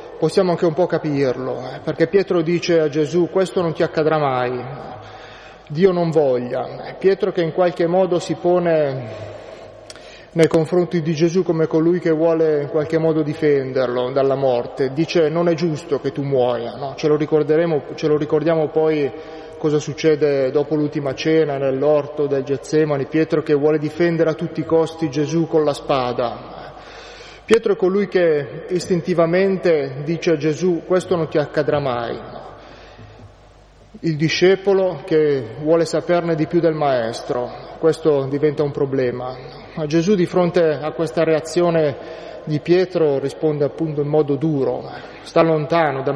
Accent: native